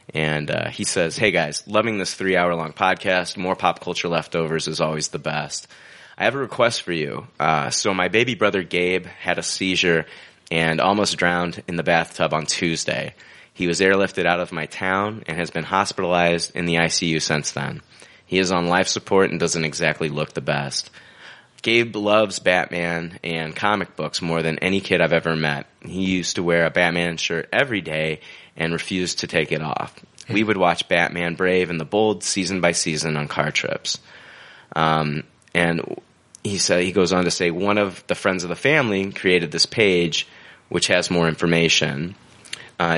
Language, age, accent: English, 30-49, American